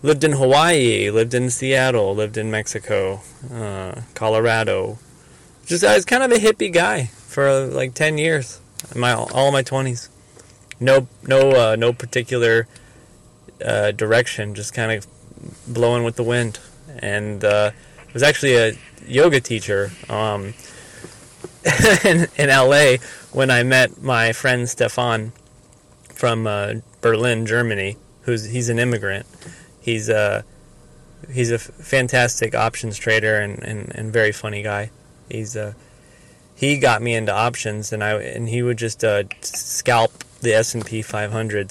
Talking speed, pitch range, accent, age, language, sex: 145 wpm, 110-125 Hz, American, 20-39, English, male